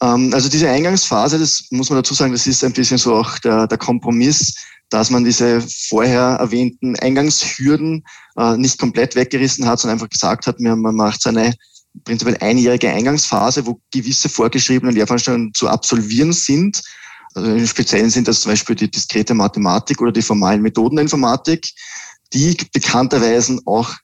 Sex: male